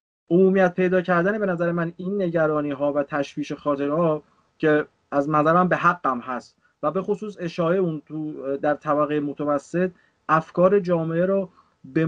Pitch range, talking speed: 150-180 Hz, 155 wpm